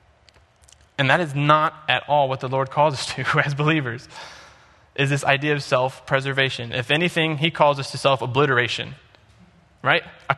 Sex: male